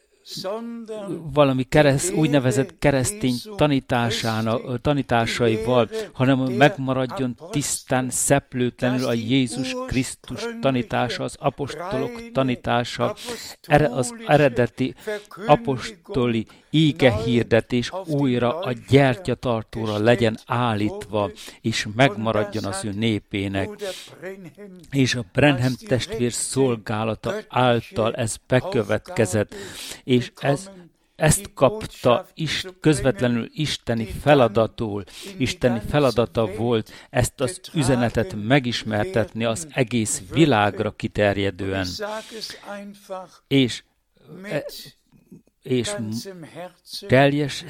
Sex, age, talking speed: male, 60-79, 80 wpm